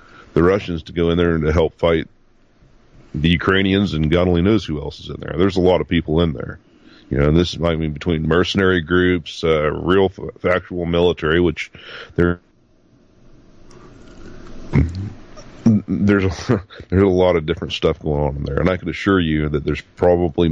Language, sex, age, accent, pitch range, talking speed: English, male, 40-59, American, 80-95 Hz, 185 wpm